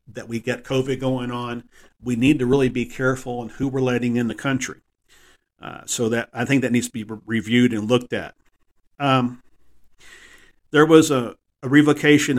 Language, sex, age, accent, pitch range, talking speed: English, male, 50-69, American, 115-135 Hz, 190 wpm